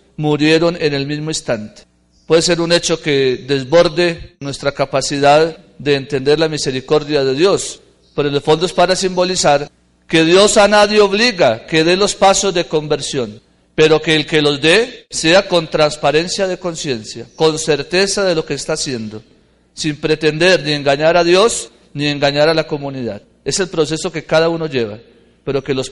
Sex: male